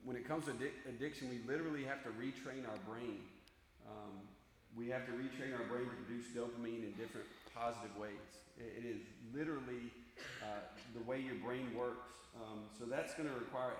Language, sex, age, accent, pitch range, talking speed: English, male, 40-59, American, 115-135 Hz, 180 wpm